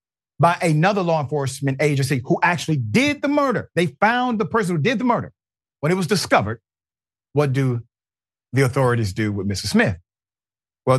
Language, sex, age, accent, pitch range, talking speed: English, male, 40-59, American, 105-150 Hz, 170 wpm